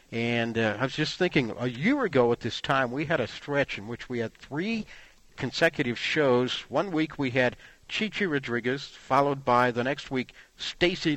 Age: 60-79